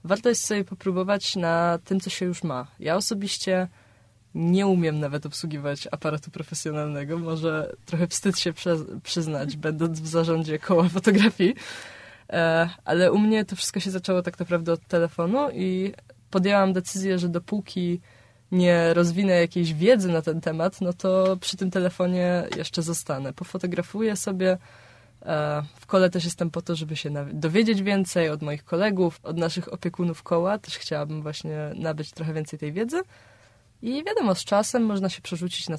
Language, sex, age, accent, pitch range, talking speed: Polish, female, 20-39, native, 150-185 Hz, 155 wpm